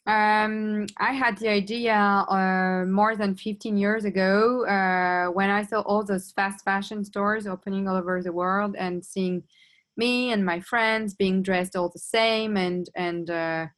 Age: 20-39